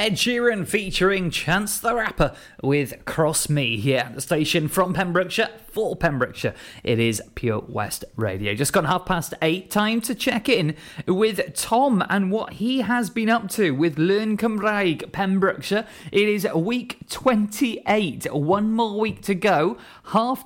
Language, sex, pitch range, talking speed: English, male, 135-195 Hz, 155 wpm